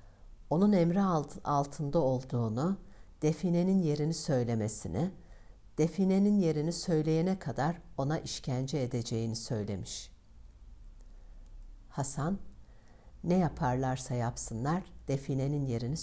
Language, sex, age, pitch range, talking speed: Turkish, female, 60-79, 100-150 Hz, 80 wpm